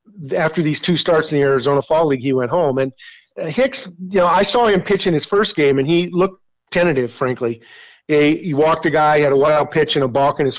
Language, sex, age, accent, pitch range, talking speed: English, male, 50-69, American, 140-170 Hz, 245 wpm